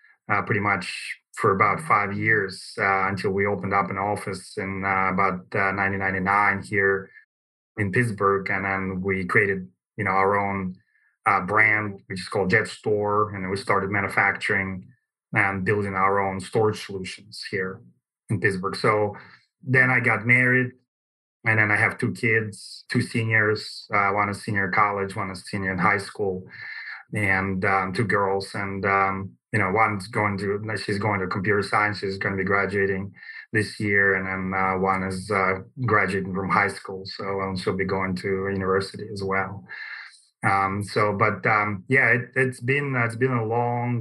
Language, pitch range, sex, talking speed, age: English, 95-105 Hz, male, 175 wpm, 20-39